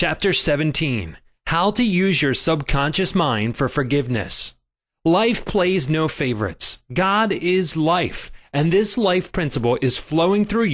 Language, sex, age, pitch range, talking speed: English, male, 30-49, 130-180 Hz, 135 wpm